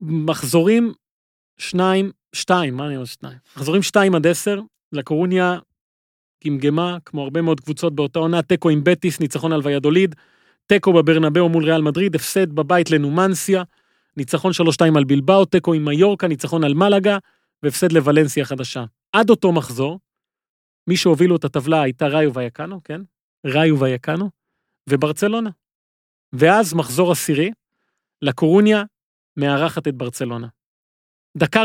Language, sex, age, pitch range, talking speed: Hebrew, male, 30-49, 140-180 Hz, 125 wpm